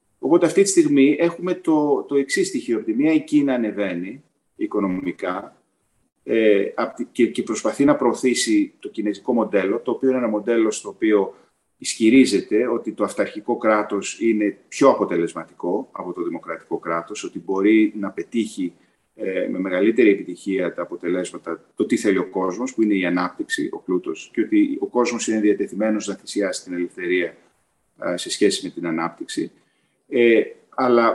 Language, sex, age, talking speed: Greek, male, 40-59, 155 wpm